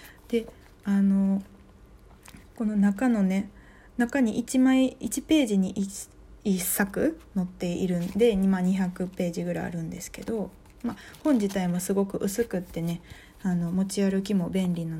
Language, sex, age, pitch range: Japanese, female, 20-39, 180-235 Hz